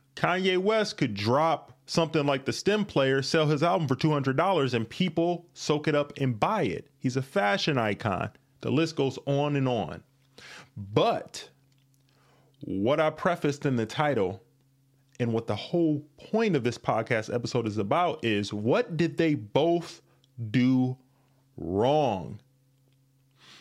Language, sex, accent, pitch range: English, male, American, 125-155 Hz